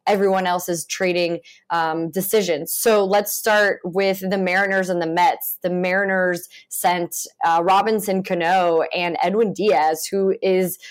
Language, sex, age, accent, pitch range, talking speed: English, female, 20-39, American, 170-200 Hz, 140 wpm